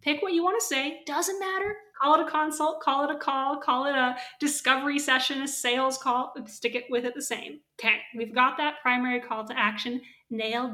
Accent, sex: American, female